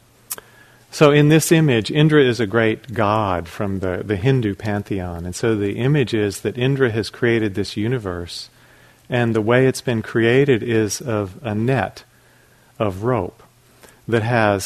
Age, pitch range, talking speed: 40-59, 105-130 Hz, 160 wpm